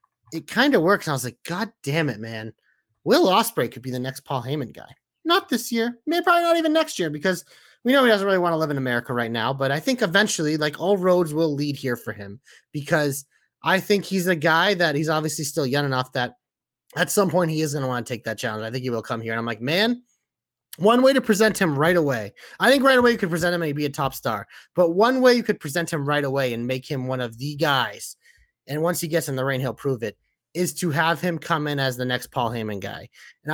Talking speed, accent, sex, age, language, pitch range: 265 wpm, American, male, 30-49, English, 140-190 Hz